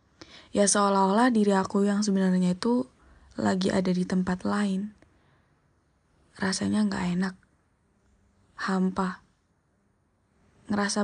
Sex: female